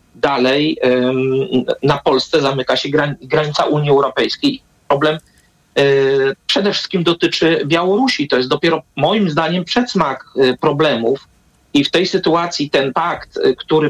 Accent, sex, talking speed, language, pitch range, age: native, male, 115 wpm, Polish, 135-170 Hz, 40-59